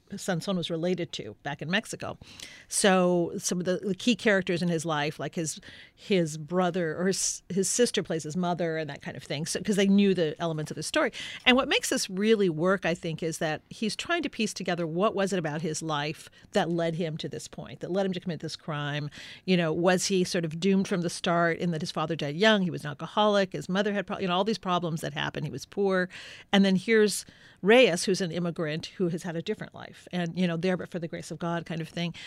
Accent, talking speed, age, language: American, 250 wpm, 40-59, English